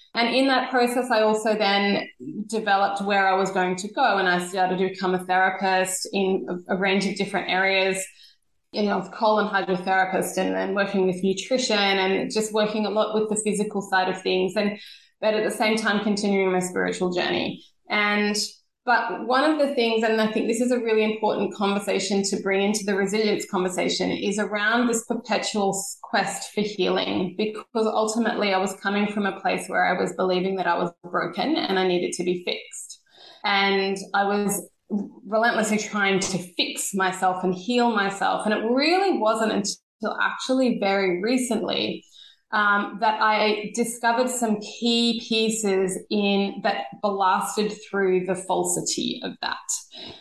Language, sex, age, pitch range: English, female, 20-39, 195-230 Hz